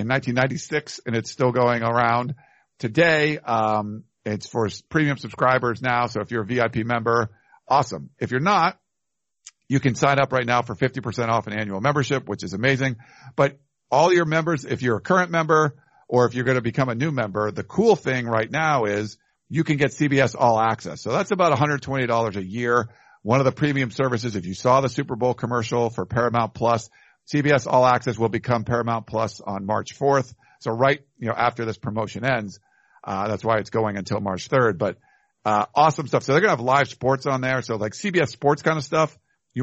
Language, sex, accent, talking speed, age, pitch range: English, male, American, 205 wpm, 50-69, 110-140 Hz